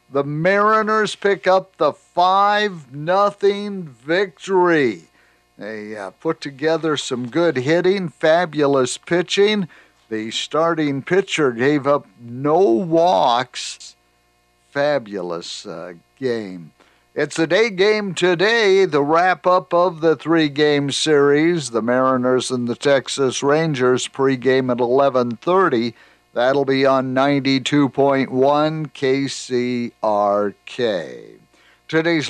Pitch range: 130-160 Hz